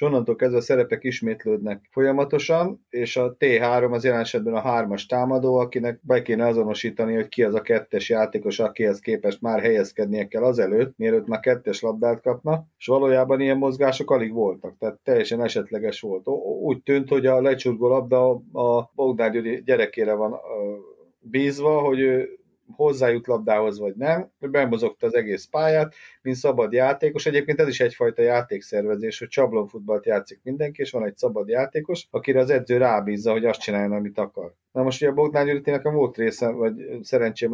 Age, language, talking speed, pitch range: 30-49, Hungarian, 170 wpm, 120-160 Hz